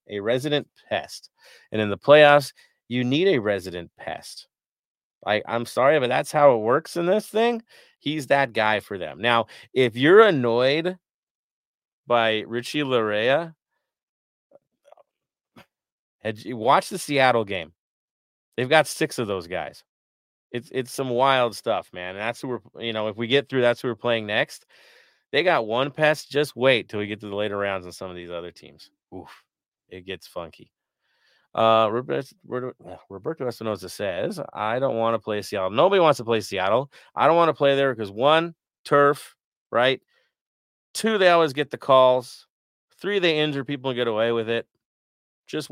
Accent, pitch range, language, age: American, 105-140 Hz, English, 30-49